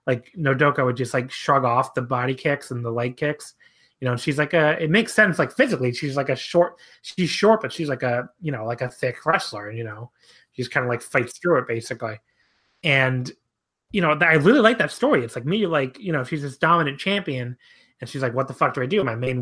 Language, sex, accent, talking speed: English, male, American, 250 wpm